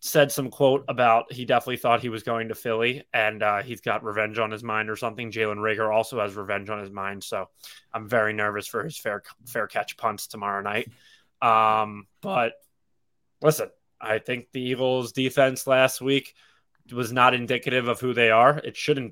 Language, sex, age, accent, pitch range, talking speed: English, male, 20-39, American, 110-130 Hz, 190 wpm